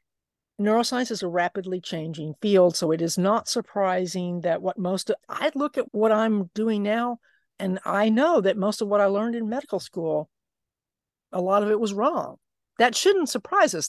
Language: English